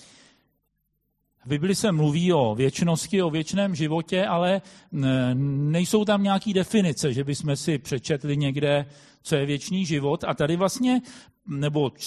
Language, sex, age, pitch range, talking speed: Czech, male, 40-59, 145-190 Hz, 135 wpm